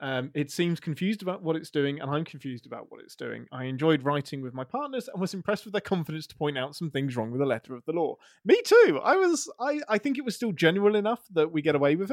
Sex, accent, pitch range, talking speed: male, British, 135-180 Hz, 275 wpm